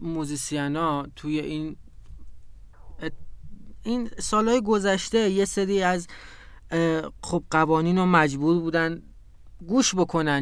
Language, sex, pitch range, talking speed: Persian, male, 145-185 Hz, 100 wpm